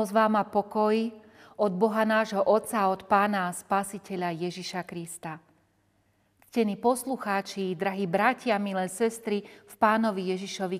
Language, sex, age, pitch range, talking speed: Slovak, female, 40-59, 185-235 Hz, 115 wpm